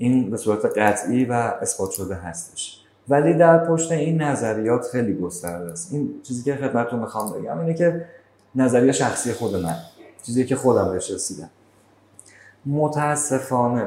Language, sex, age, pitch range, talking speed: Persian, male, 30-49, 100-135 Hz, 145 wpm